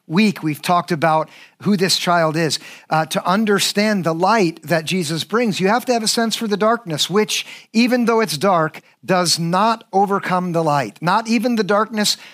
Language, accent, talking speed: English, American, 190 wpm